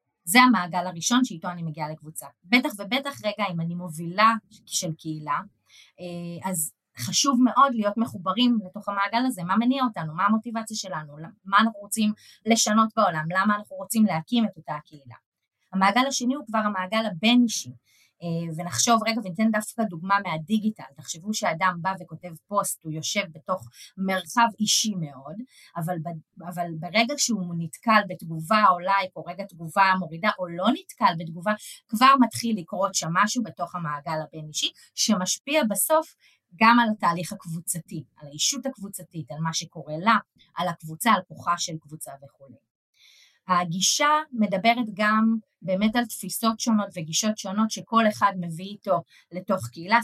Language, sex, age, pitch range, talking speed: Hebrew, female, 20-39, 170-220 Hz, 150 wpm